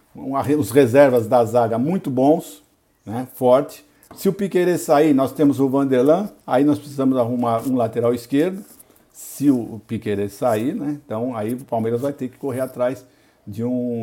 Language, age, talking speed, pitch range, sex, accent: Portuguese, 50-69, 165 wpm, 115-155 Hz, male, Brazilian